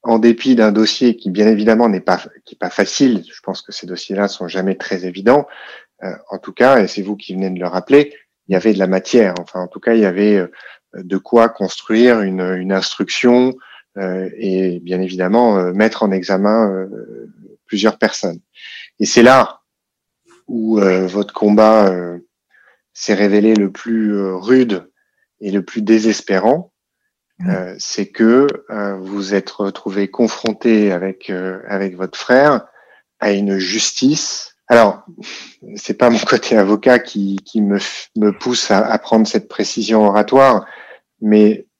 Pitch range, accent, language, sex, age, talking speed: 95-115 Hz, French, French, male, 30-49, 165 wpm